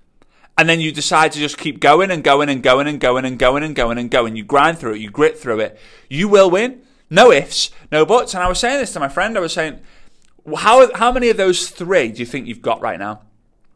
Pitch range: 115-155 Hz